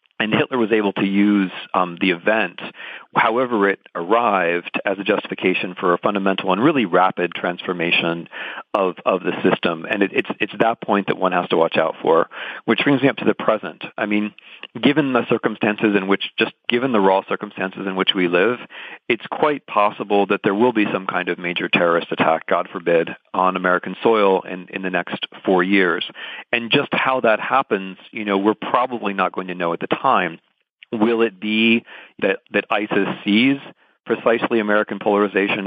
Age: 40-59